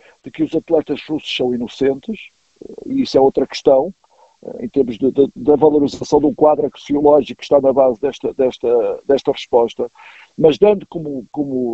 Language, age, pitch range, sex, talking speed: Portuguese, 50-69, 140-200 Hz, male, 170 wpm